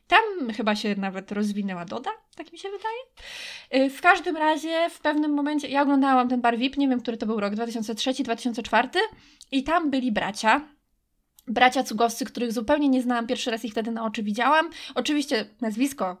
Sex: female